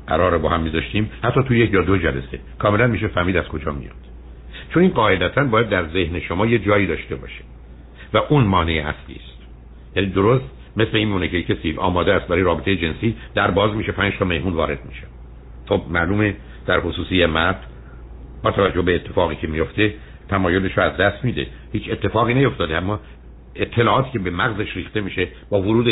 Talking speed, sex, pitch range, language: 185 wpm, male, 75-105 Hz, Persian